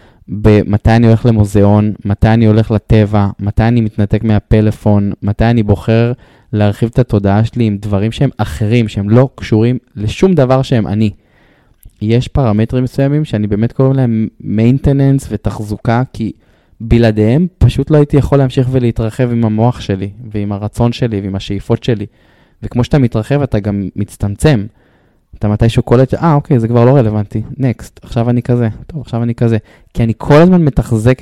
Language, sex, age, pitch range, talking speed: Hebrew, male, 20-39, 105-125 Hz, 165 wpm